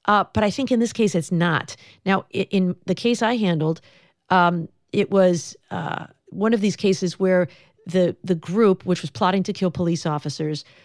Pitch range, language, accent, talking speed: 160-190 Hz, English, American, 195 wpm